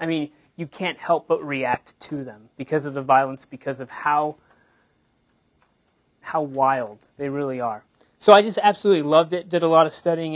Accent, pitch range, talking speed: American, 135-165 Hz, 185 wpm